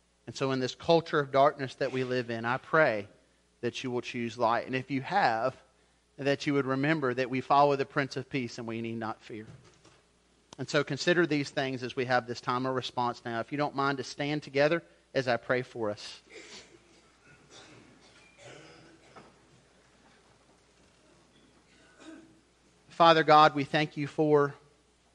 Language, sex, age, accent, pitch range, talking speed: English, male, 40-59, American, 120-150 Hz, 165 wpm